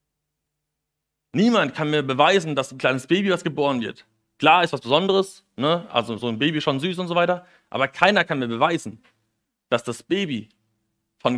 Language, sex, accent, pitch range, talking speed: German, male, German, 125-165 Hz, 175 wpm